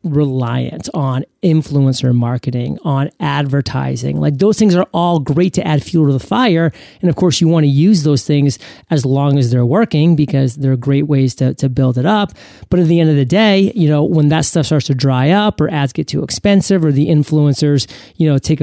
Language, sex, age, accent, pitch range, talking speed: English, male, 30-49, American, 135-160 Hz, 220 wpm